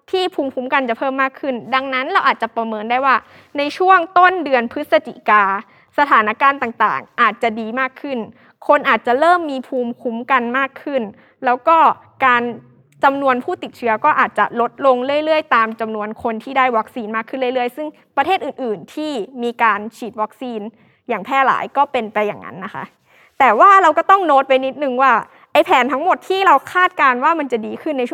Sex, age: female, 20-39